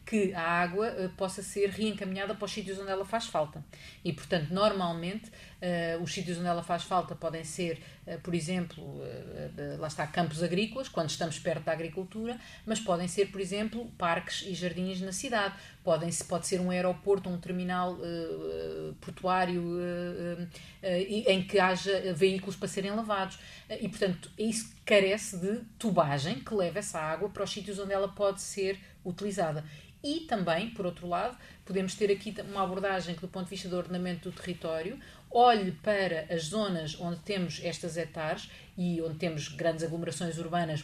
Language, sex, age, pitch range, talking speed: Portuguese, female, 30-49, 170-205 Hz, 165 wpm